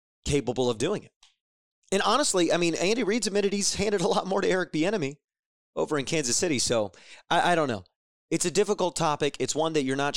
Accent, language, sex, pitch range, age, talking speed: American, English, male, 115-155 Hz, 30-49, 220 wpm